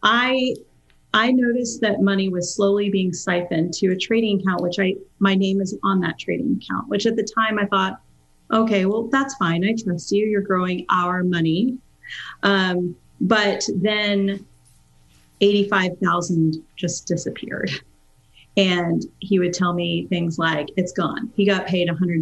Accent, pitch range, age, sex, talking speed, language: American, 175-205 Hz, 40-59, female, 155 wpm, English